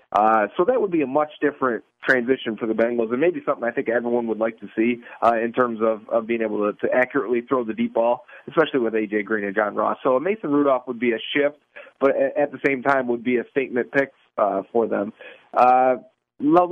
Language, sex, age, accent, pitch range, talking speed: English, male, 30-49, American, 125-175 Hz, 235 wpm